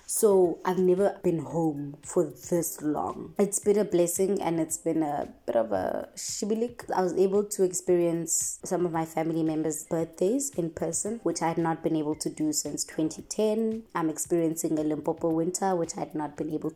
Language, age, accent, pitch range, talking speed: English, 20-39, South African, 160-185 Hz, 195 wpm